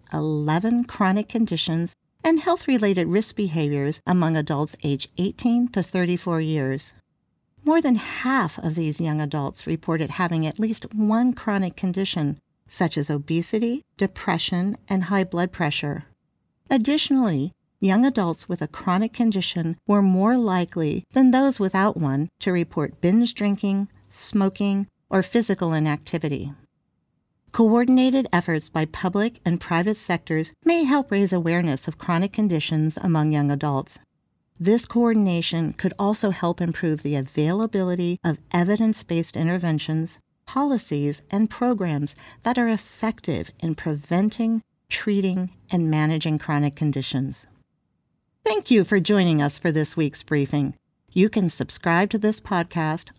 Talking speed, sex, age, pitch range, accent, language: 130 wpm, female, 50-69, 155-210 Hz, American, English